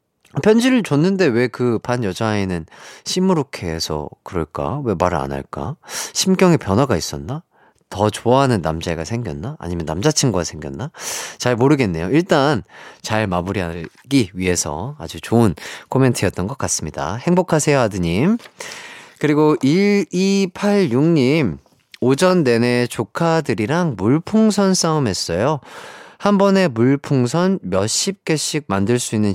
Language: Korean